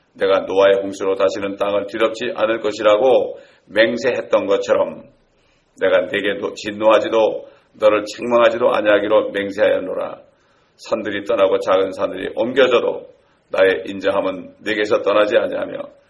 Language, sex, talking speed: English, male, 100 wpm